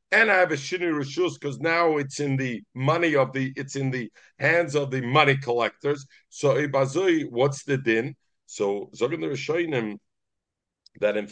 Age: 50-69